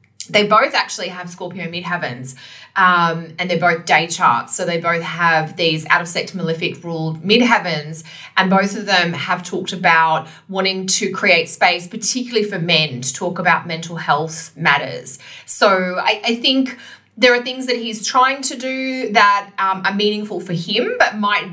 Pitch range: 165-205 Hz